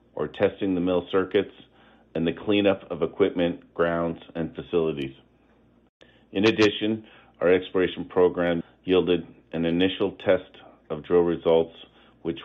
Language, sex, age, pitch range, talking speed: English, male, 50-69, 80-90 Hz, 125 wpm